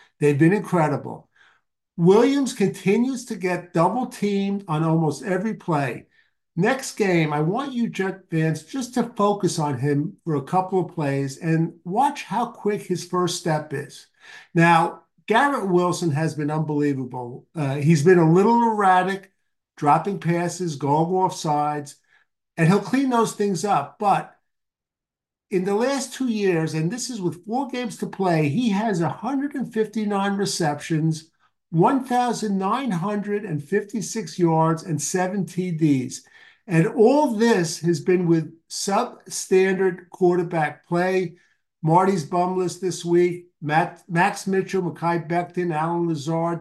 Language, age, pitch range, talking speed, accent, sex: English, 50-69, 160-205 Hz, 135 wpm, American, male